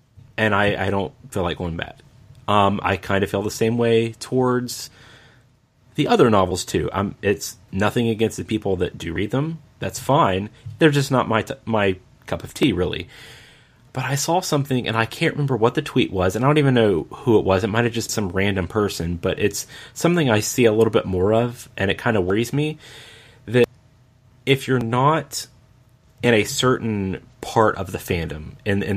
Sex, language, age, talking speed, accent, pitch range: male, English, 30-49, 205 wpm, American, 100-125 Hz